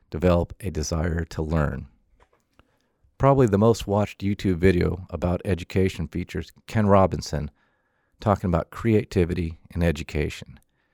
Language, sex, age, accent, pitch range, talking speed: English, male, 40-59, American, 85-100 Hz, 115 wpm